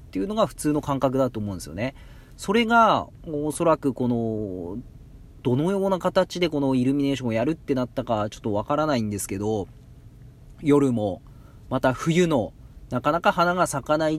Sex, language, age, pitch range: male, Japanese, 40-59, 110-150 Hz